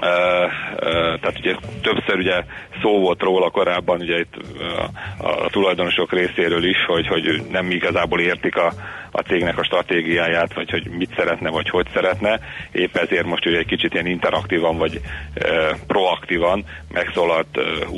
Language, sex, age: Hungarian, male, 40-59